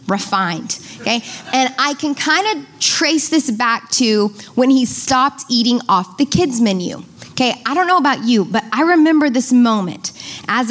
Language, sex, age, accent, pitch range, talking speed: English, female, 20-39, American, 245-320 Hz, 175 wpm